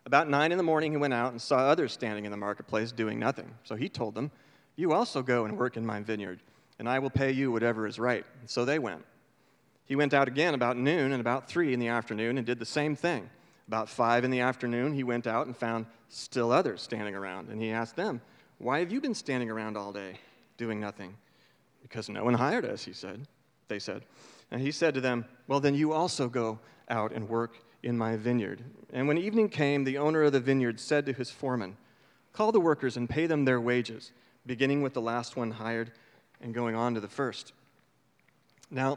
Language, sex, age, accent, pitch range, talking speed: English, male, 40-59, American, 115-140 Hz, 220 wpm